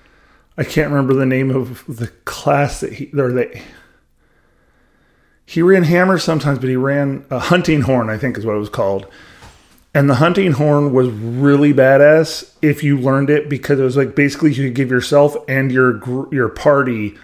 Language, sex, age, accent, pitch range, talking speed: English, male, 30-49, American, 115-140 Hz, 180 wpm